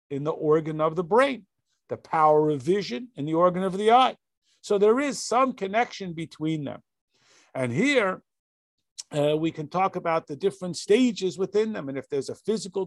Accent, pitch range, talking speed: American, 155-200 Hz, 185 wpm